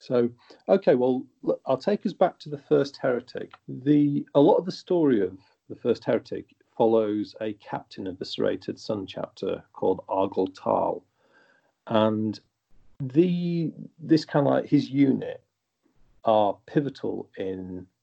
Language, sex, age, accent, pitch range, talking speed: English, male, 40-59, British, 100-140 Hz, 145 wpm